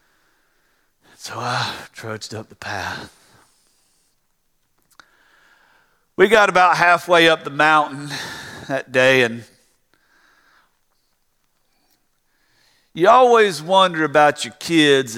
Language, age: English, 50-69